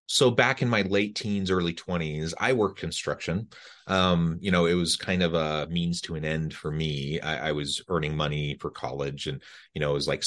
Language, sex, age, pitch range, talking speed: English, male, 30-49, 75-95 Hz, 220 wpm